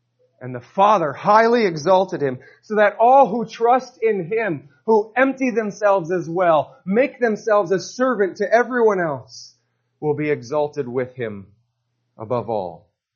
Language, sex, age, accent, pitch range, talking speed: English, male, 30-49, American, 125-200 Hz, 145 wpm